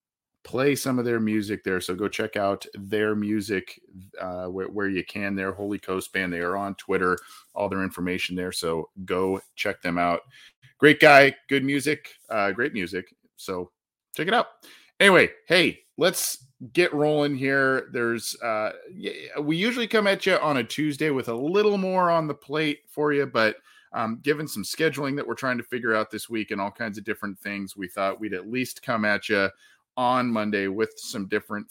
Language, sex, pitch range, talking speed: English, male, 100-140 Hz, 195 wpm